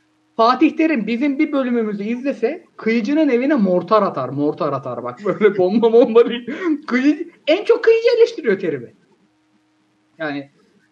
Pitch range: 185-285 Hz